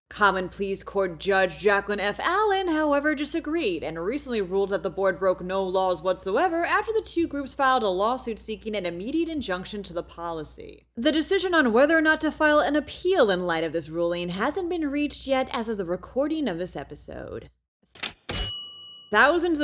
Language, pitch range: English, 180-290 Hz